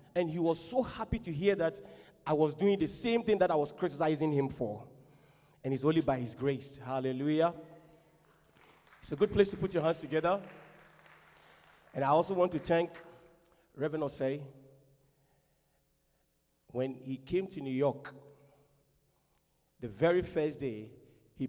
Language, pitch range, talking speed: English, 125-155 Hz, 155 wpm